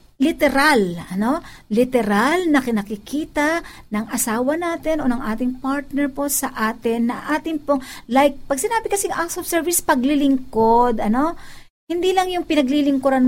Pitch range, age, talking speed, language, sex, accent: 220-275 Hz, 50-69, 140 wpm, Filipino, female, native